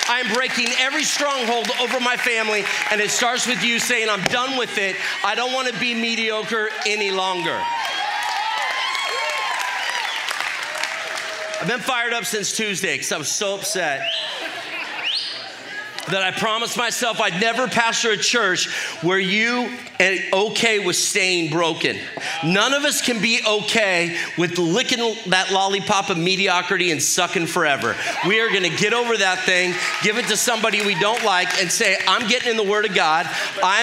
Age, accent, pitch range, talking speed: 40-59, American, 185-230 Hz, 160 wpm